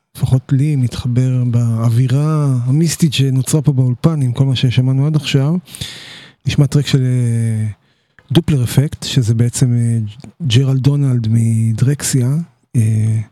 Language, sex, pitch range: English, male, 125-150 Hz